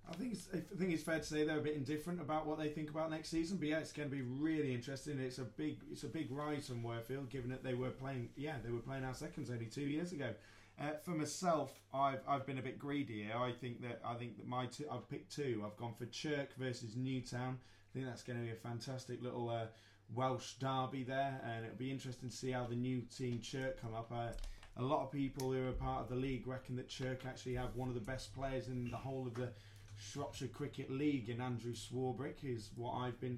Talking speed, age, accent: 255 wpm, 20-39, British